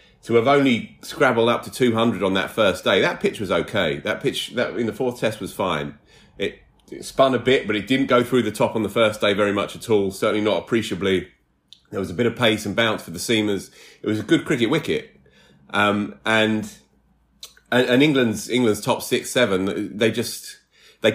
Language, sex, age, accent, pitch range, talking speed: English, male, 30-49, British, 95-120 Hz, 215 wpm